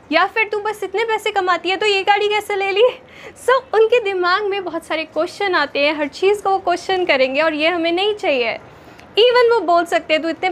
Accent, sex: native, female